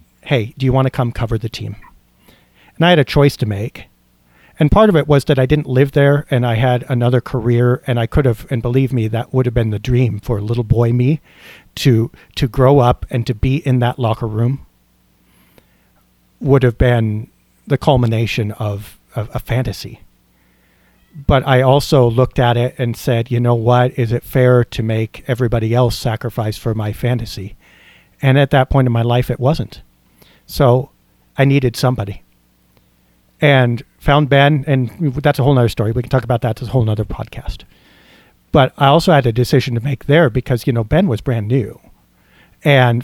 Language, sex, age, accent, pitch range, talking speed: English, male, 40-59, American, 110-135 Hz, 195 wpm